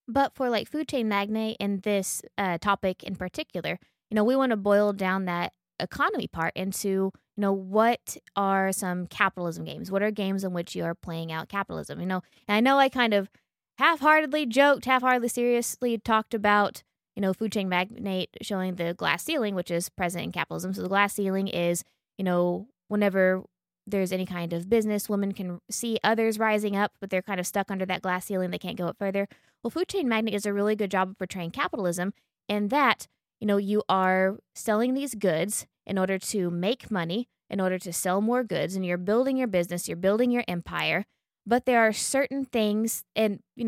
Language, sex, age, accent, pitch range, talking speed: English, female, 20-39, American, 185-230 Hz, 205 wpm